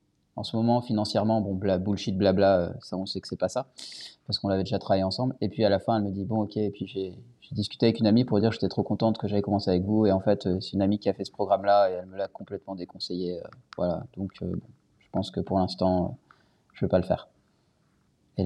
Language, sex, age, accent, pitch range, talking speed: French, male, 20-39, French, 95-115 Hz, 265 wpm